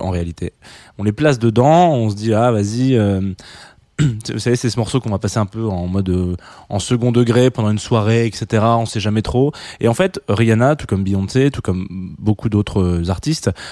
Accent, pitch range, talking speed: French, 100-130 Hz, 210 wpm